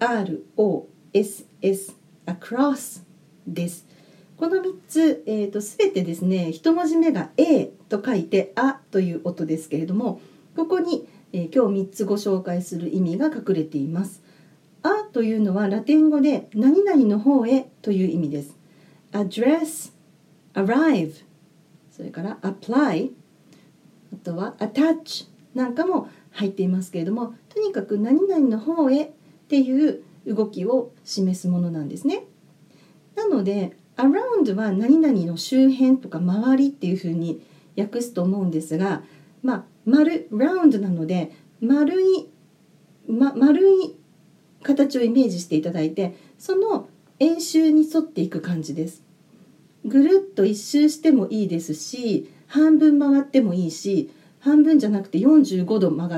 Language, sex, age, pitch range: Japanese, female, 40-59, 175-280 Hz